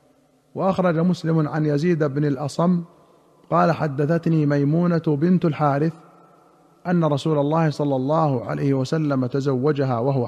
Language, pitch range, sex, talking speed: Arabic, 140-165 Hz, male, 115 wpm